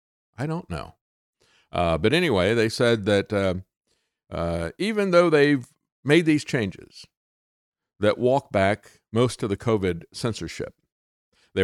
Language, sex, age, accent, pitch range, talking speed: English, male, 50-69, American, 90-135 Hz, 135 wpm